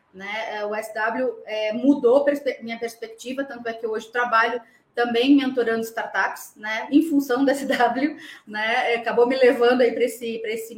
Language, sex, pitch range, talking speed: Portuguese, female, 230-285 Hz, 145 wpm